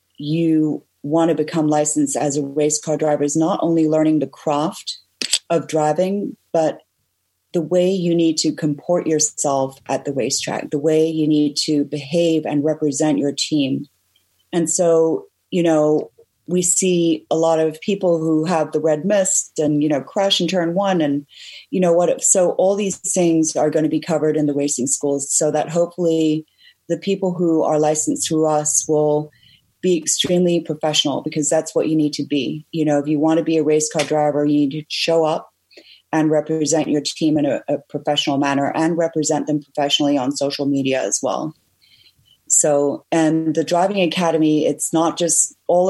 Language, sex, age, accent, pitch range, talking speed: English, female, 30-49, American, 150-165 Hz, 185 wpm